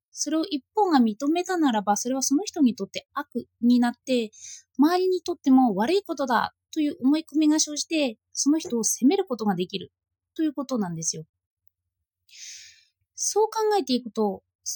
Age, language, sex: 20-39, Japanese, female